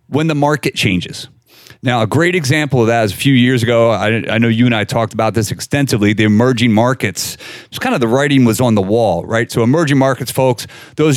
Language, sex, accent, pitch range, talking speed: English, male, American, 115-145 Hz, 230 wpm